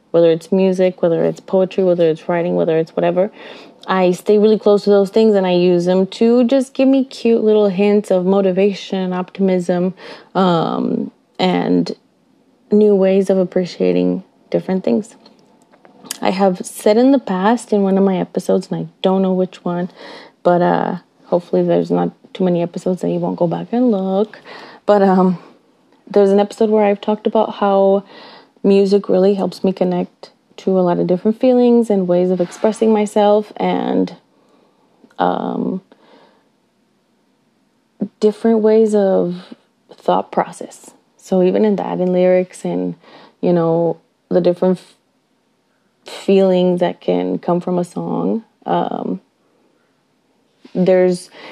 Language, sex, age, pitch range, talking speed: English, female, 20-39, 180-215 Hz, 145 wpm